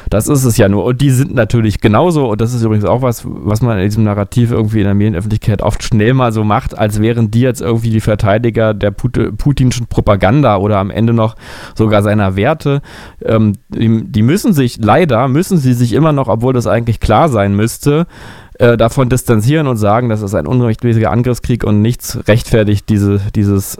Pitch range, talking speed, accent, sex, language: 105-125 Hz, 200 wpm, German, male, German